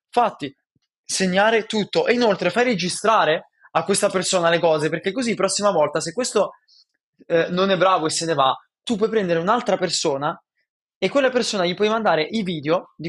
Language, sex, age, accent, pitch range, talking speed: Italian, male, 20-39, native, 155-200 Hz, 190 wpm